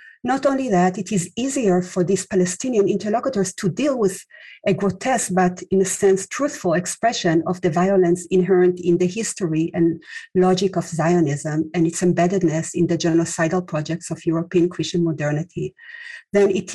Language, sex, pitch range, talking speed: English, female, 170-200 Hz, 160 wpm